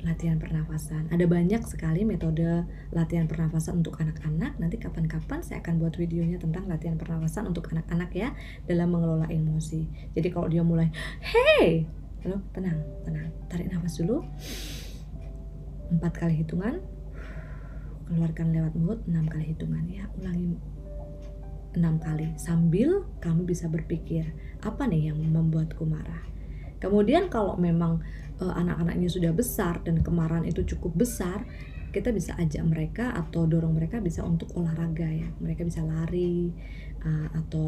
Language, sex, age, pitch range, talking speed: Indonesian, female, 20-39, 160-175 Hz, 135 wpm